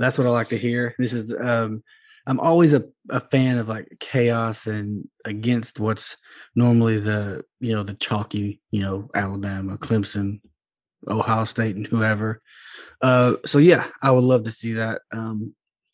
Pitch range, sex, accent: 110-125 Hz, male, American